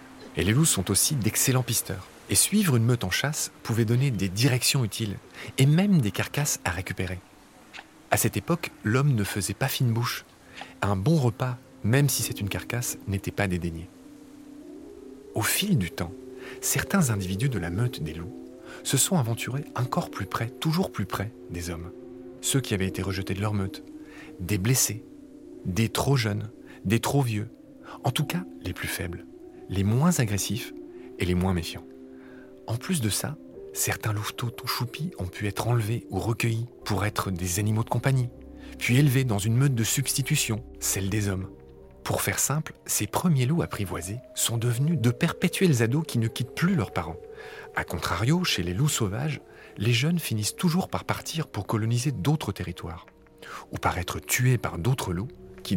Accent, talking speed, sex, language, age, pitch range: French, 180 wpm, male, French, 40-59, 100-145 Hz